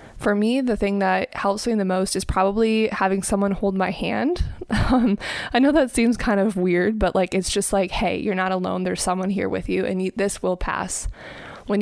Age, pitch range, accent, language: 20-39, 185-220 Hz, American, English